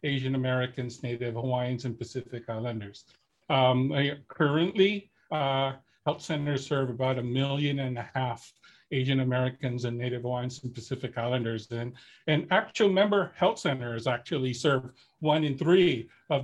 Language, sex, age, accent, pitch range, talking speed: English, male, 50-69, American, 135-175 Hz, 140 wpm